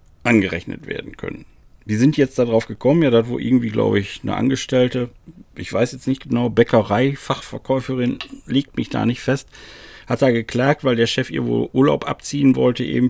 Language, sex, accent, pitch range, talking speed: German, male, German, 105-130 Hz, 180 wpm